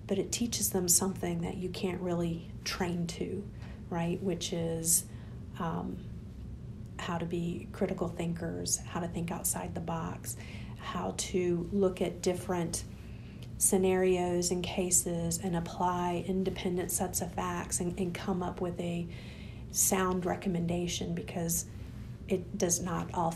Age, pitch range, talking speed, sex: 40-59, 165-185 Hz, 135 wpm, female